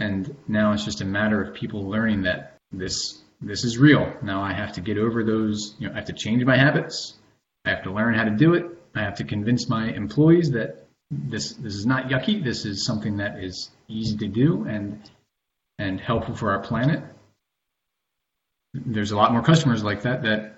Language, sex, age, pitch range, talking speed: English, male, 30-49, 105-125 Hz, 205 wpm